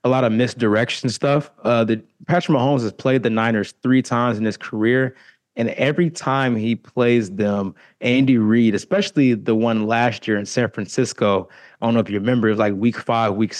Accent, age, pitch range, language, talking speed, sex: American, 20-39, 115-135 Hz, English, 200 wpm, male